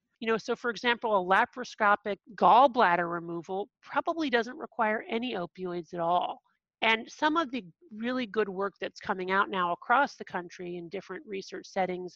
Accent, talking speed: American, 170 wpm